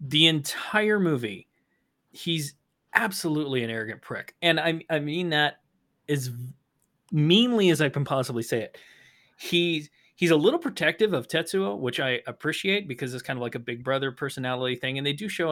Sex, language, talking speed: male, English, 175 wpm